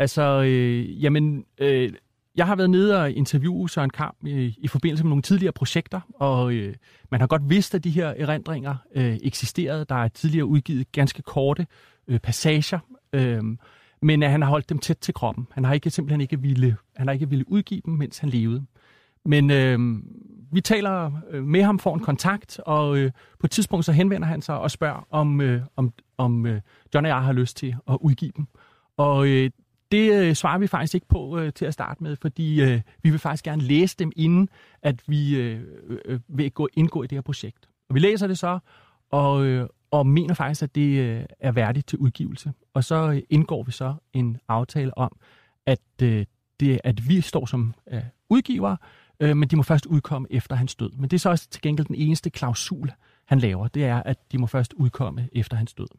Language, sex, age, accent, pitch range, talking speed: Danish, male, 30-49, native, 125-160 Hz, 195 wpm